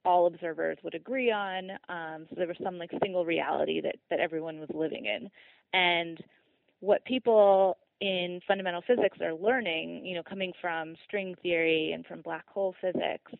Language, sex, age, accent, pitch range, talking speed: English, female, 20-39, American, 170-205 Hz, 170 wpm